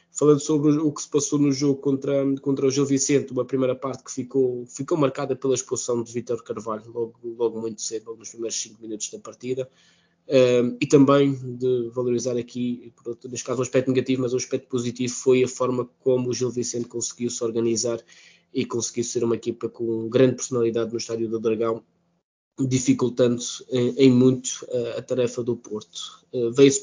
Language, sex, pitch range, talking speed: Portuguese, male, 115-135 Hz, 180 wpm